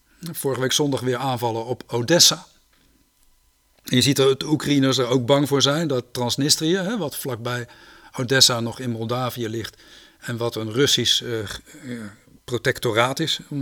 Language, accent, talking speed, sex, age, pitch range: Dutch, Dutch, 160 wpm, male, 50-69, 120-140 Hz